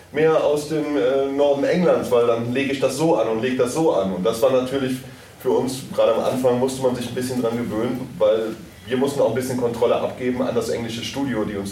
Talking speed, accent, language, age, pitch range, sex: 245 wpm, German, German, 30-49, 100-125 Hz, male